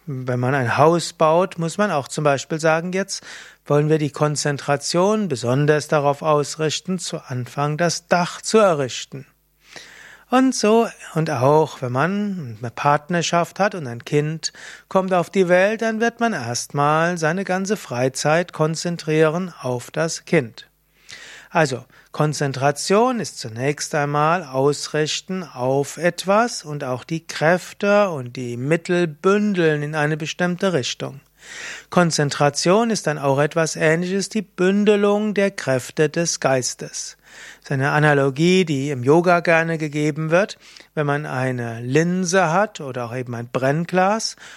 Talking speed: 140 wpm